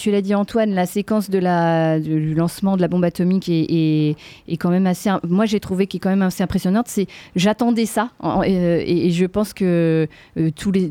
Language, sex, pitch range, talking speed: French, female, 170-215 Hz, 230 wpm